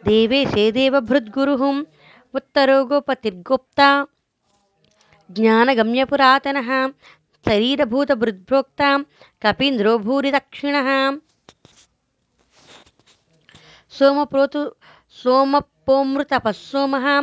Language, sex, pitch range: Telugu, female, 240-280 Hz